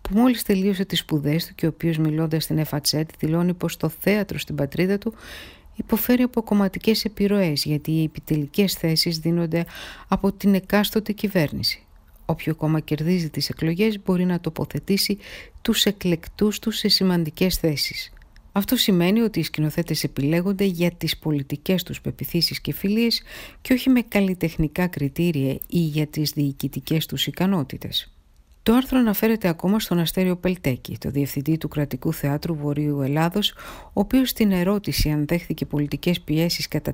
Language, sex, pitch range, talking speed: Greek, female, 150-200 Hz, 150 wpm